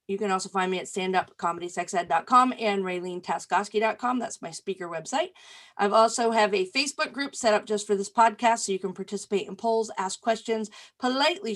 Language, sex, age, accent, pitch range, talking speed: English, female, 40-59, American, 190-245 Hz, 180 wpm